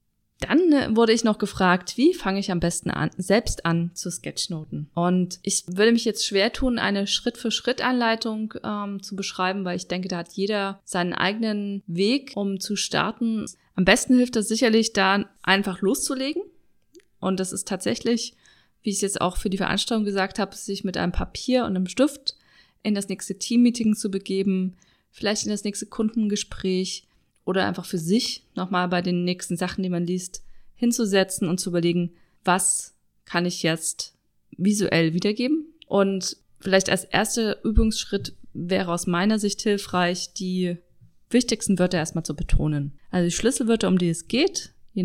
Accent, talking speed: German, 165 wpm